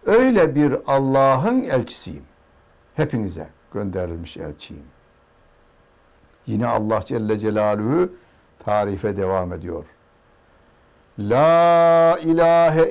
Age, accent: 60-79, native